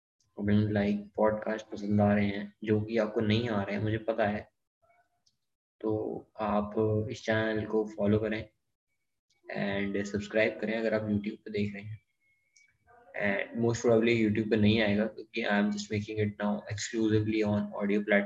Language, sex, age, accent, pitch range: Hindi, male, 20-39, native, 105-110 Hz